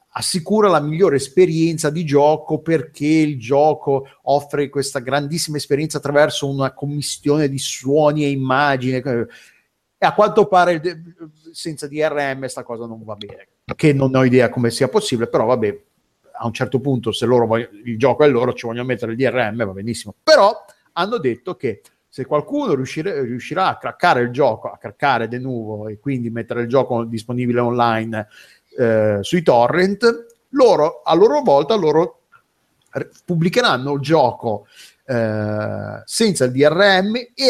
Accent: native